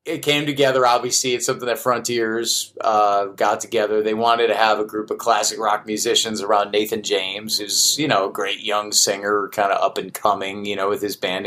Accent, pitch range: American, 100-130 Hz